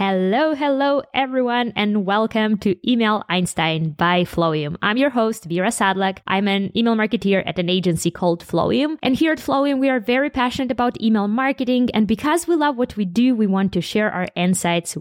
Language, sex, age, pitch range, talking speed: English, female, 20-39, 175-235 Hz, 190 wpm